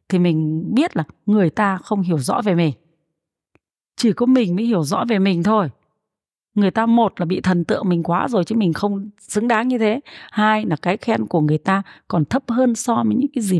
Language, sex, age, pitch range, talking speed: Vietnamese, female, 30-49, 175-245 Hz, 230 wpm